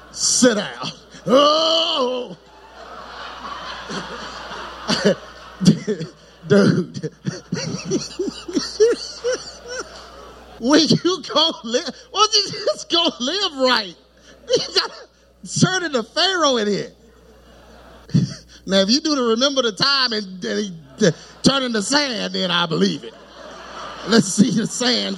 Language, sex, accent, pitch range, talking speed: English, male, American, 185-295 Hz, 105 wpm